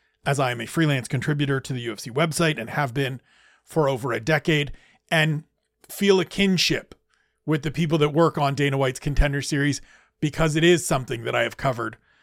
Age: 40-59